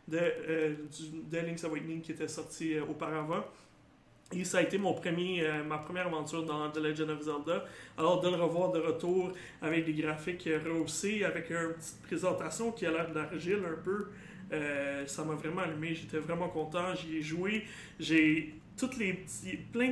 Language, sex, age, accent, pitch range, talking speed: French, male, 30-49, Canadian, 155-185 Hz, 190 wpm